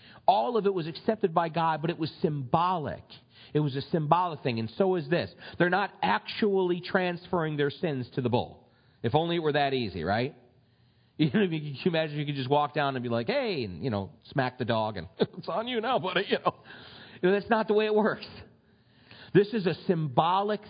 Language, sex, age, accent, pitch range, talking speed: English, male, 40-59, American, 125-180 Hz, 225 wpm